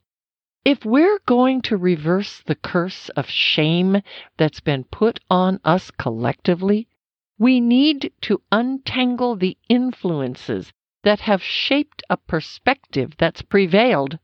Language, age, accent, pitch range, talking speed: English, 50-69, American, 150-240 Hz, 120 wpm